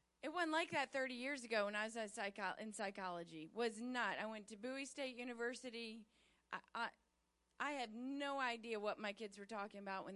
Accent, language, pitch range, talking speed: American, English, 185-250 Hz, 205 wpm